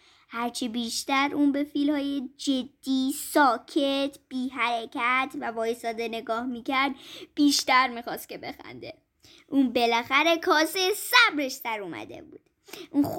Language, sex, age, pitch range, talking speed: Persian, male, 10-29, 275-390 Hz, 120 wpm